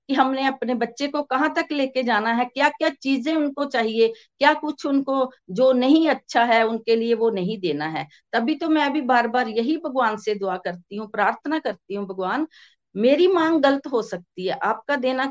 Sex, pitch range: female, 210-285 Hz